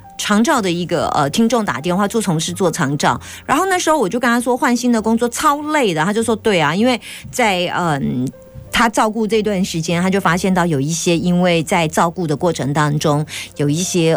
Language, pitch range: Chinese, 155-220 Hz